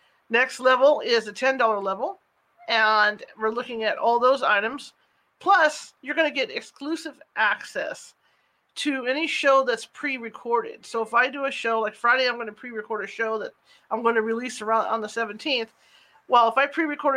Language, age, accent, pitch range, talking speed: English, 40-59, American, 220-265 Hz, 180 wpm